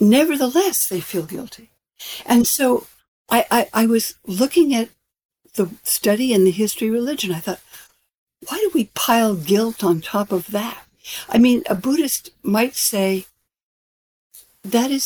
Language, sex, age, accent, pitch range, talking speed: English, female, 60-79, American, 190-240 Hz, 150 wpm